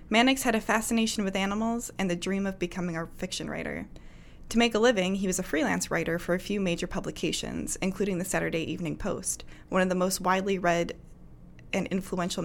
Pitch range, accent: 175-220 Hz, American